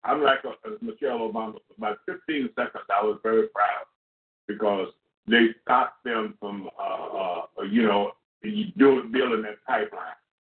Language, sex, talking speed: English, male, 150 wpm